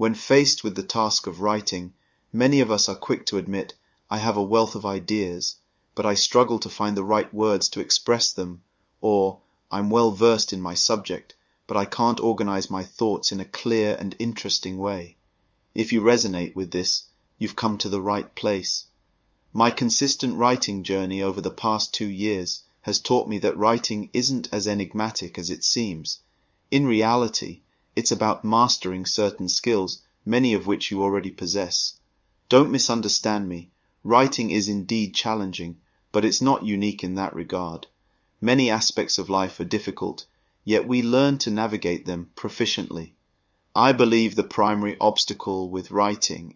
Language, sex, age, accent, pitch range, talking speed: English, male, 30-49, British, 95-110 Hz, 165 wpm